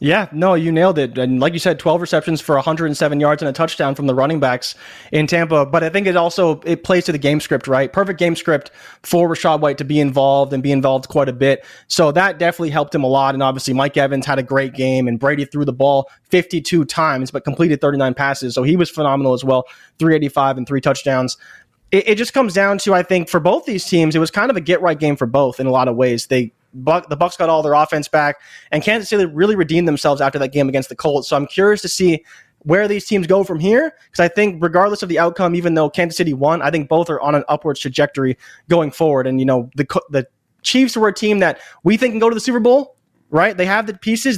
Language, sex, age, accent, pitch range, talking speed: English, male, 20-39, American, 140-180 Hz, 255 wpm